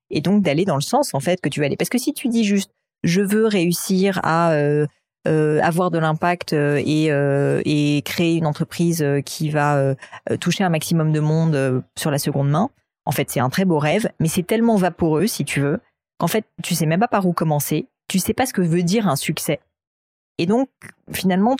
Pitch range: 150-180 Hz